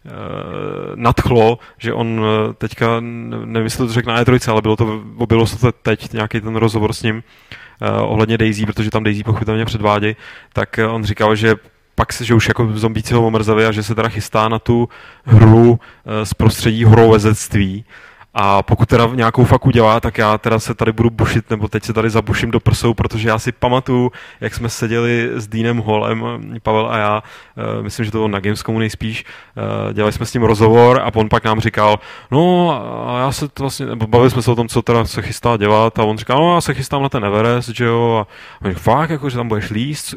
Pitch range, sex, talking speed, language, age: 110-135 Hz, male, 215 wpm, Czech, 20-39